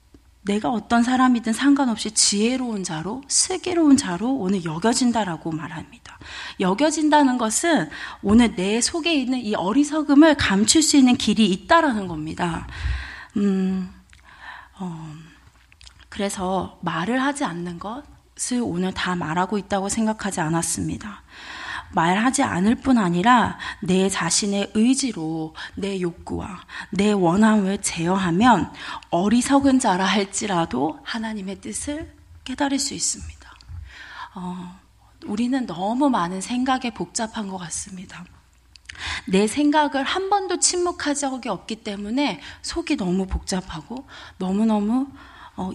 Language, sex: Korean, female